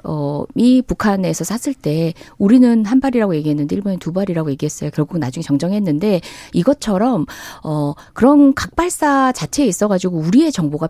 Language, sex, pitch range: Korean, female, 180-285 Hz